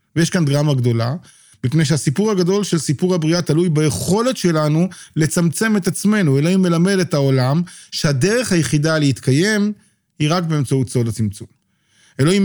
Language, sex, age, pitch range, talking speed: Hebrew, male, 40-59, 135-180 Hz, 140 wpm